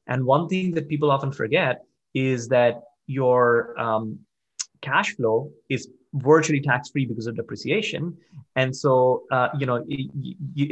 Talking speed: 135 wpm